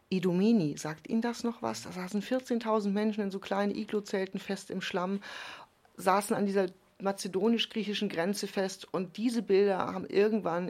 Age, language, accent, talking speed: 40-59, German, German, 155 wpm